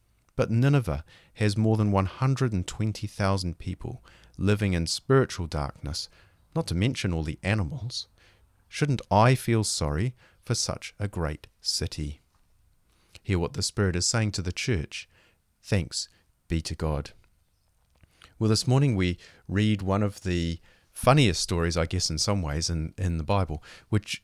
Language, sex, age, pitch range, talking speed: English, male, 40-59, 85-110 Hz, 145 wpm